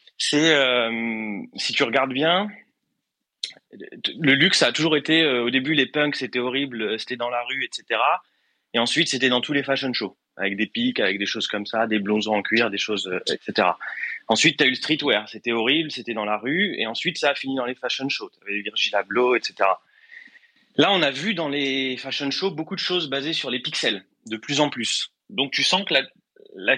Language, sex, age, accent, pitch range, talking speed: English, male, 20-39, French, 120-155 Hz, 220 wpm